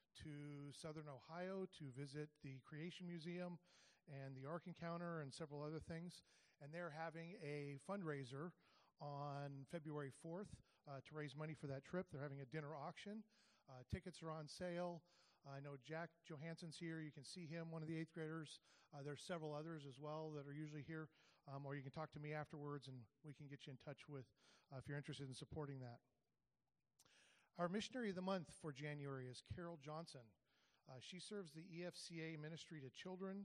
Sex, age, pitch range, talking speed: male, 40-59, 145-175 Hz, 190 wpm